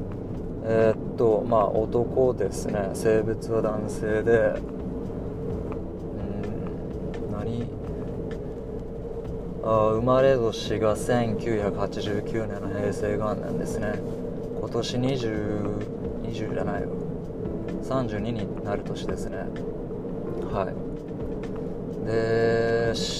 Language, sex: Japanese, male